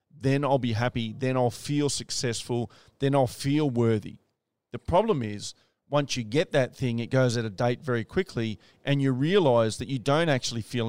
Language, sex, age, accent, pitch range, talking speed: English, male, 40-59, Australian, 115-150 Hz, 195 wpm